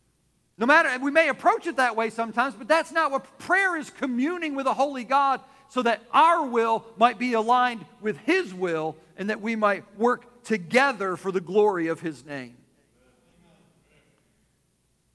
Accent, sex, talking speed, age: American, male, 165 wpm, 50-69